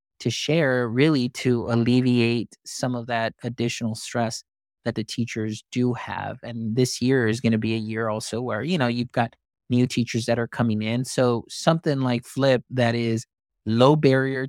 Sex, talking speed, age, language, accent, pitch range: male, 180 wpm, 20-39, English, American, 115-130 Hz